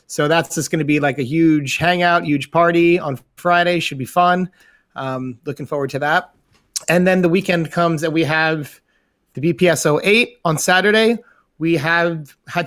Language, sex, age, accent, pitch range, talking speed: English, male, 30-49, American, 140-175 Hz, 180 wpm